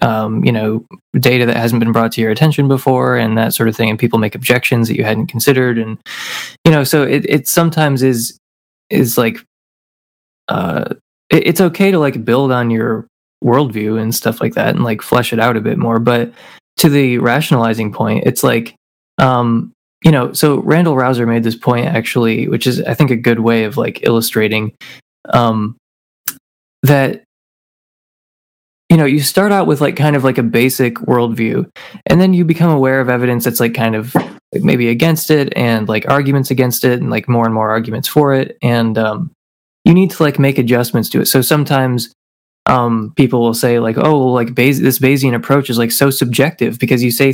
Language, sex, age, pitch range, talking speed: English, male, 20-39, 115-140 Hz, 200 wpm